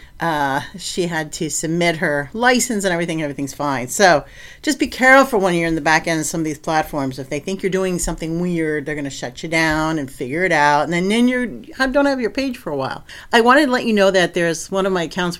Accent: American